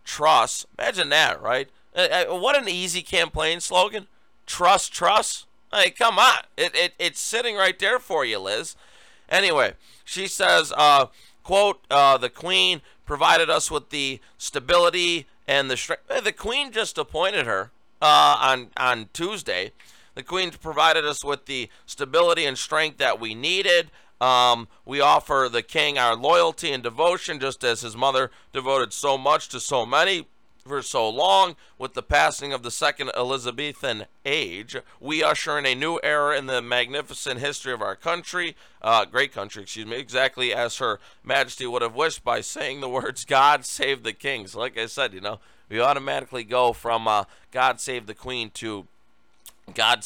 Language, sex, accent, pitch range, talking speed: English, male, American, 125-180 Hz, 170 wpm